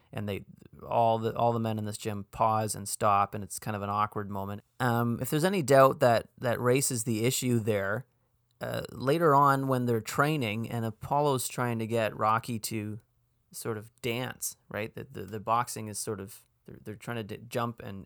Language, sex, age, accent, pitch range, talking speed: English, male, 30-49, American, 115-140 Hz, 210 wpm